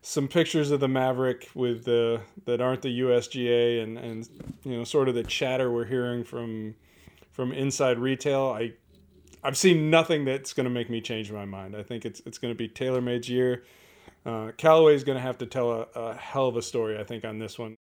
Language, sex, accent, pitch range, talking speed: English, male, American, 120-140 Hz, 220 wpm